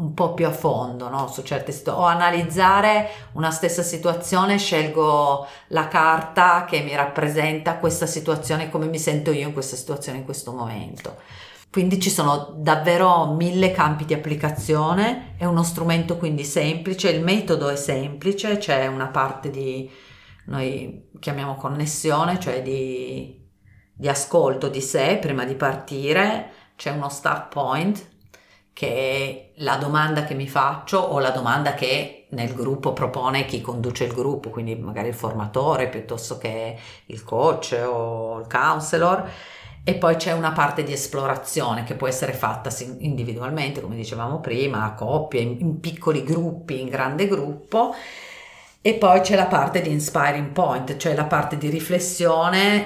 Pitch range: 135-170 Hz